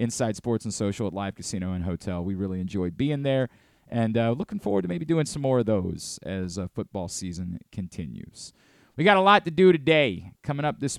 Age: 30-49